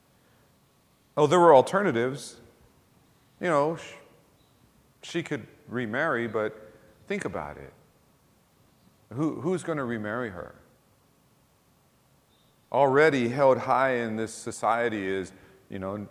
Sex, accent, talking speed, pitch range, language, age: male, American, 105 wpm, 105-135 Hz, English, 40-59